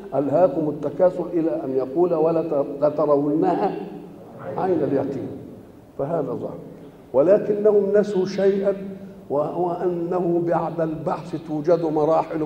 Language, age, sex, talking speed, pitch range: Arabic, 50-69, male, 95 wpm, 165-210 Hz